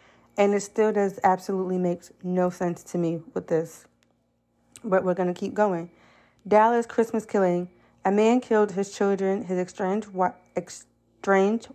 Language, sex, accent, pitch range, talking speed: English, female, American, 175-200 Hz, 145 wpm